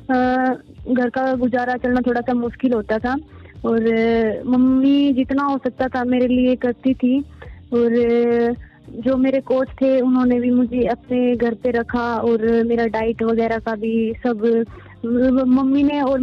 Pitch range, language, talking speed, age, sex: 240-265 Hz, Hindi, 150 wpm, 20-39, female